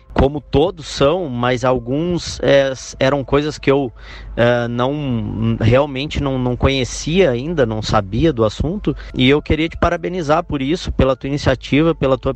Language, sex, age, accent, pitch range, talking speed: Portuguese, male, 20-39, Brazilian, 115-135 Hz, 160 wpm